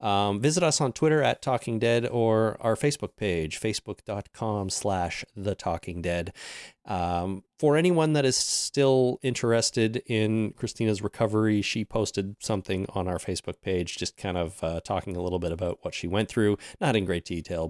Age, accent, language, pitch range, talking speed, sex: 30-49, American, English, 95-130 Hz, 165 wpm, male